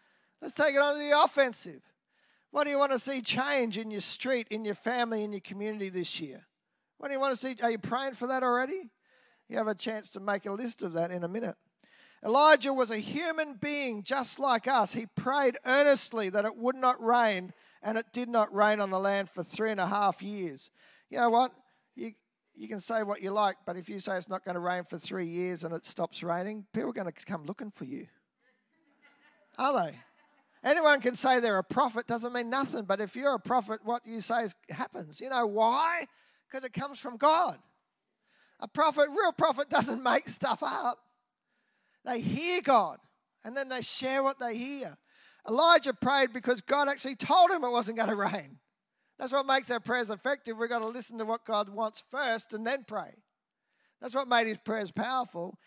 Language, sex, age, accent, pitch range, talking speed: English, male, 40-59, Australian, 210-270 Hz, 210 wpm